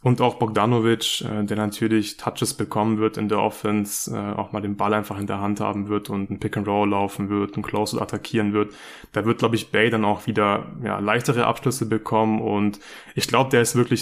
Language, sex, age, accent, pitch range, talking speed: German, male, 20-39, German, 105-120 Hz, 215 wpm